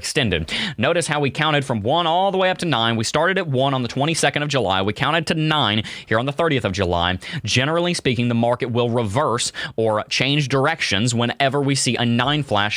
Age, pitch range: 30-49, 110-150 Hz